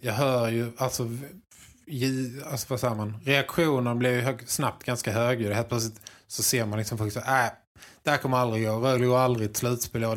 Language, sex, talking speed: Swedish, male, 195 wpm